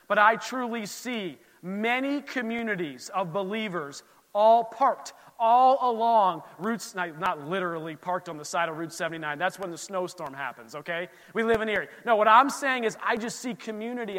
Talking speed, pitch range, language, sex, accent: 175 wpm, 165-210 Hz, English, male, American